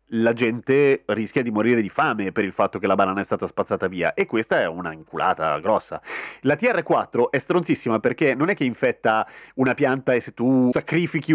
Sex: male